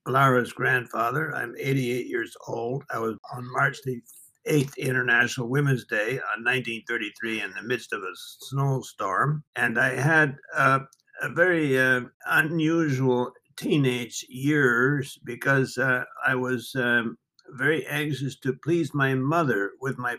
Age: 60-79